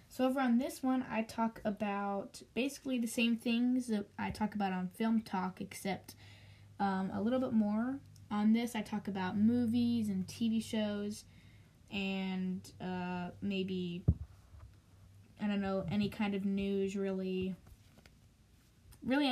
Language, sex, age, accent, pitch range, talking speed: English, female, 10-29, American, 185-225 Hz, 145 wpm